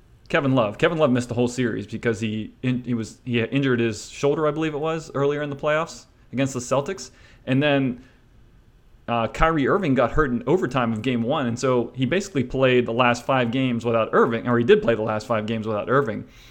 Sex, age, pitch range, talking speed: male, 30-49, 115-135 Hz, 220 wpm